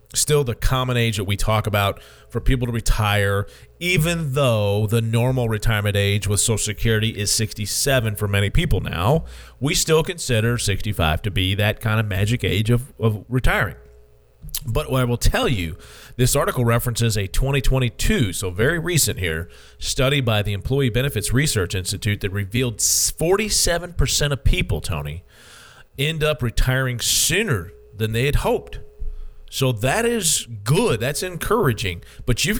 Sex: male